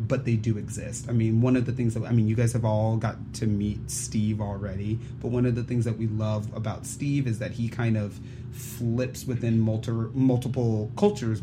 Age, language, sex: 30-49, English, male